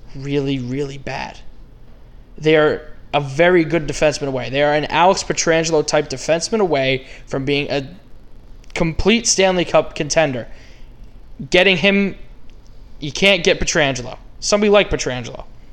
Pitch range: 130-170 Hz